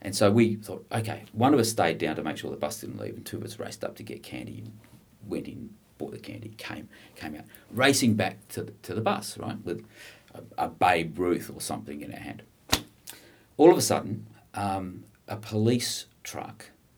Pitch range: 95-115 Hz